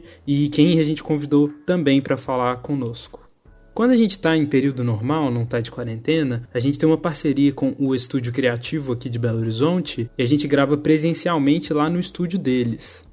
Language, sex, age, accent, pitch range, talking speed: Portuguese, male, 20-39, Brazilian, 125-155 Hz, 190 wpm